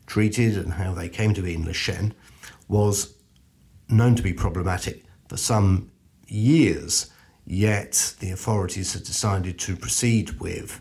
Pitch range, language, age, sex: 95-115 Hz, English, 50-69, male